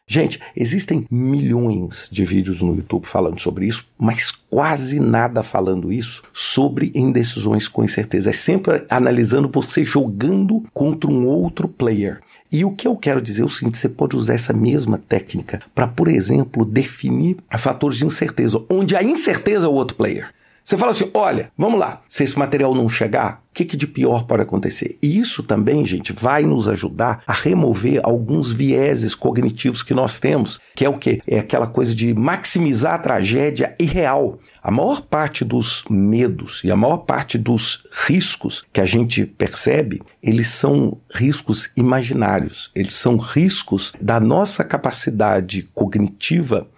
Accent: Brazilian